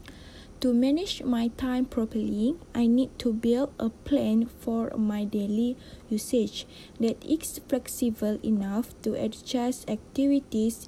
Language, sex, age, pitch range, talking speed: Malay, female, 20-39, 215-260 Hz, 120 wpm